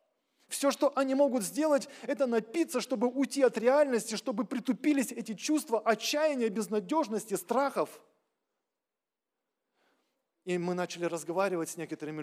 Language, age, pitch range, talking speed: Russian, 20-39, 150-200 Hz, 120 wpm